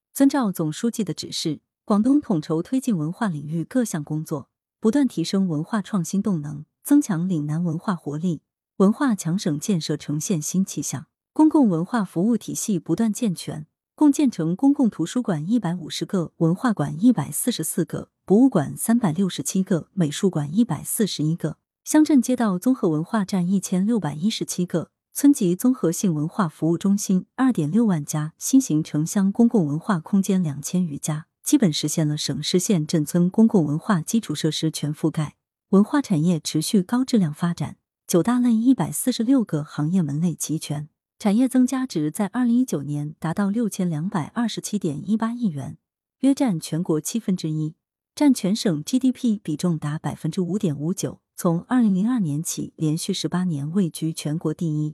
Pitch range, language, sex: 155-225 Hz, Chinese, female